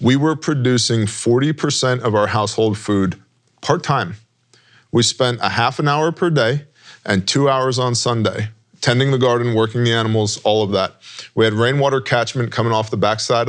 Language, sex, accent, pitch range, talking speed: English, male, American, 110-135 Hz, 175 wpm